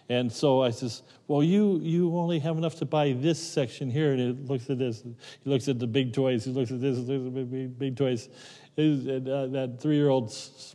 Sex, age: male, 40-59